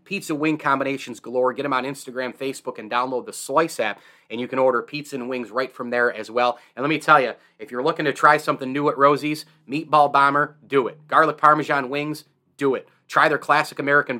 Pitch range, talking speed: 125-150 Hz, 225 wpm